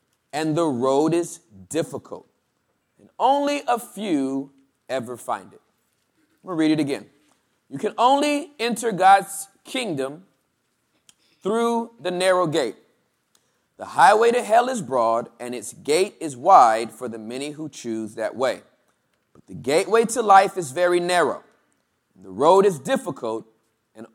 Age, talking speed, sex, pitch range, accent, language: 30-49, 145 wpm, male, 170-255 Hz, American, English